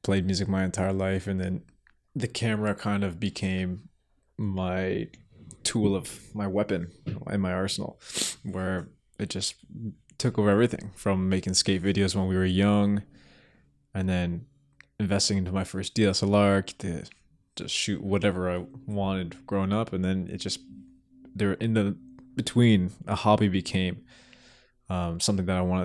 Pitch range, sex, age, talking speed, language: 95-105 Hz, male, 20-39, 150 wpm, English